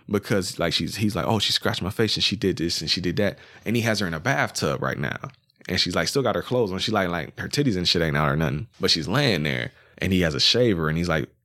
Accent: American